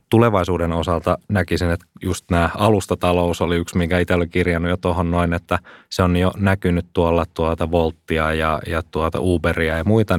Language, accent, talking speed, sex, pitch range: Finnish, native, 175 wpm, male, 80-90 Hz